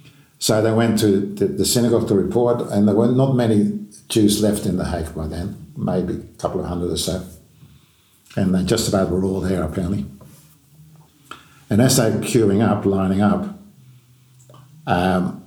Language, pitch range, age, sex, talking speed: English, 95-120 Hz, 50-69, male, 170 wpm